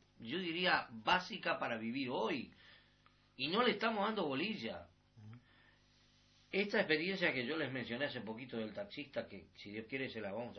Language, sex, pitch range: Spanish, male, 120-175 Hz